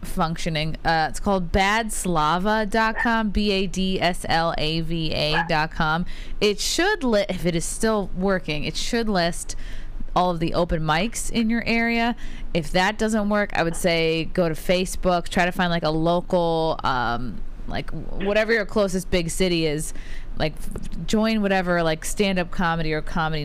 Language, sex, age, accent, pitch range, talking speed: English, female, 20-39, American, 160-200 Hz, 145 wpm